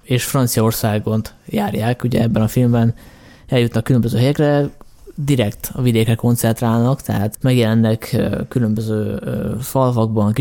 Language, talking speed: Hungarian, 105 wpm